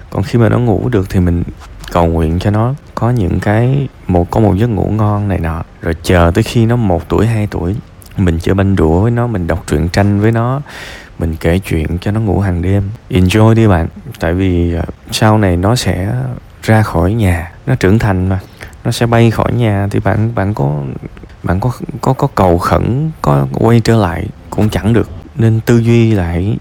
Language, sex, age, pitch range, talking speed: Vietnamese, male, 20-39, 85-110 Hz, 210 wpm